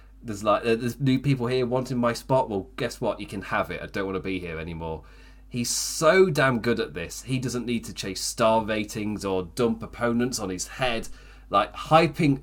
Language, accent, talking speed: English, British, 210 wpm